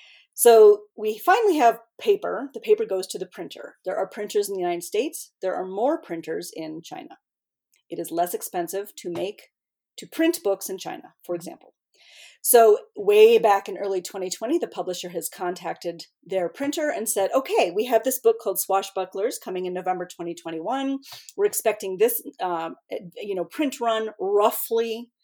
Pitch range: 190-305 Hz